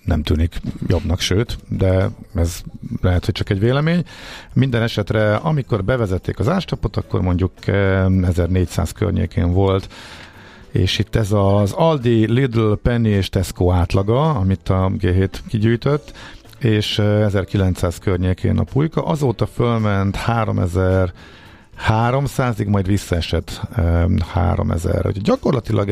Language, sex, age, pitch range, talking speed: Hungarian, male, 50-69, 95-110 Hz, 115 wpm